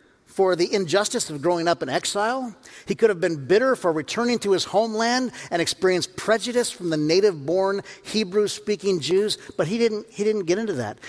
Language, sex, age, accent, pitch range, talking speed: English, male, 50-69, American, 150-210 Hz, 185 wpm